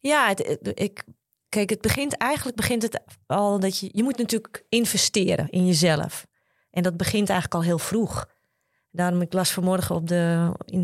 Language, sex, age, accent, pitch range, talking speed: Dutch, female, 30-49, Dutch, 175-215 Hz, 145 wpm